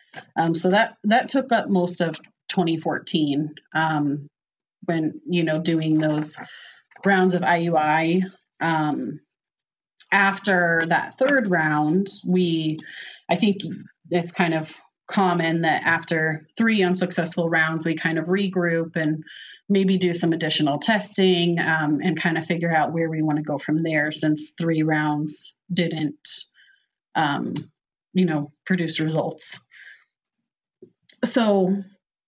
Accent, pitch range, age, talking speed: American, 155-185 Hz, 30-49, 125 wpm